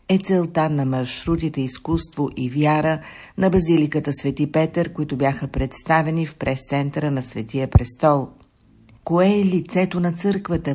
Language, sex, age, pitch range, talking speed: Bulgarian, female, 60-79, 140-165 Hz, 135 wpm